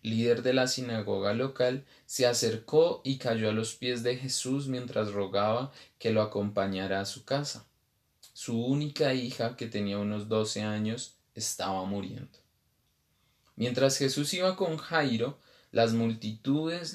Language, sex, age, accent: Spanish, male, 20-39, Colombian